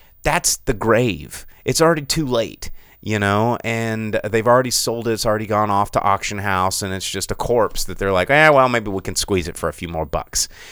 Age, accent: 30-49, American